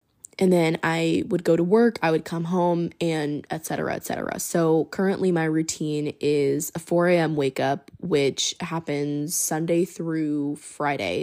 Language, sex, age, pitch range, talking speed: English, female, 10-29, 155-180 Hz, 165 wpm